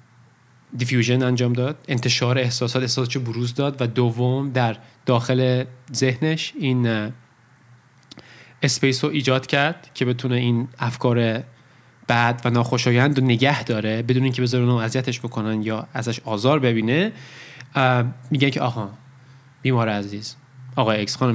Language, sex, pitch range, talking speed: Persian, male, 120-130 Hz, 130 wpm